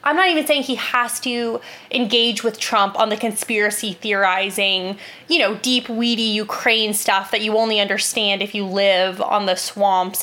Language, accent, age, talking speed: English, American, 20-39, 175 wpm